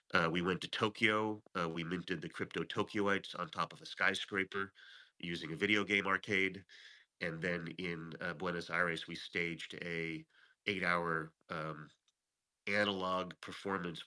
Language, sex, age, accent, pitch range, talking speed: English, male, 30-49, American, 85-100 Hz, 150 wpm